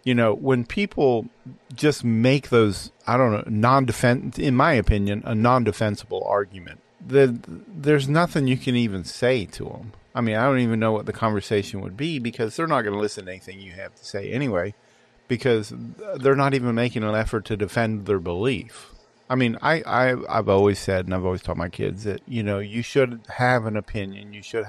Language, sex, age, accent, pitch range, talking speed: English, male, 40-59, American, 100-120 Hz, 205 wpm